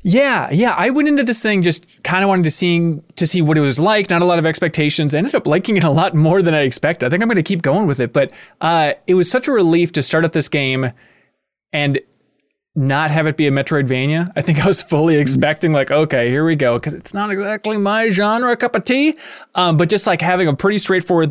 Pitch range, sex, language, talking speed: 135-180 Hz, male, English, 255 wpm